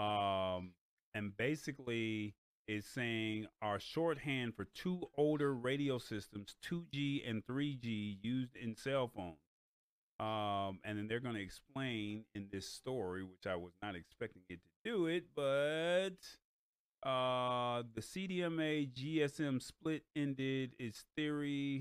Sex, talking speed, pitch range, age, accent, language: male, 130 wpm, 105-150 Hz, 30-49, American, English